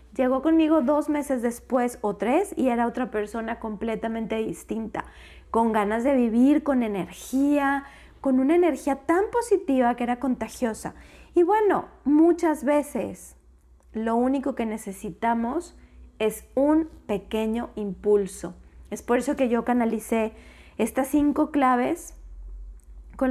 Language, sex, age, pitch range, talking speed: Spanish, female, 20-39, 220-275 Hz, 125 wpm